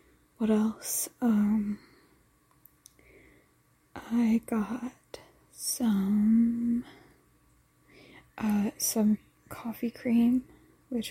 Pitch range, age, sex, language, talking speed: 210-235 Hz, 20-39, female, English, 60 wpm